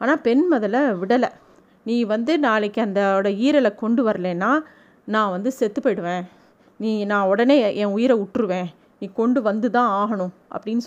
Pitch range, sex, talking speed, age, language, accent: 220-275 Hz, female, 150 wpm, 30-49, Tamil, native